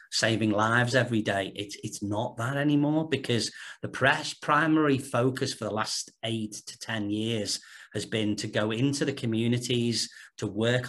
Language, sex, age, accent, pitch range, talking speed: English, male, 40-59, British, 105-130 Hz, 165 wpm